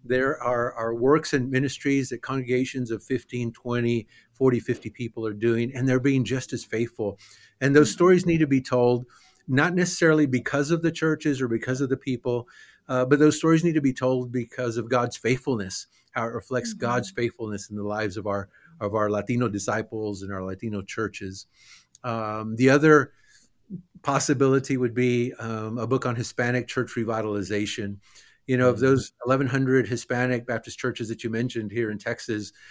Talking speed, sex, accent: 175 wpm, male, American